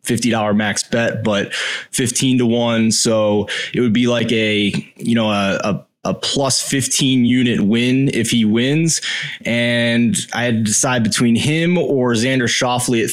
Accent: American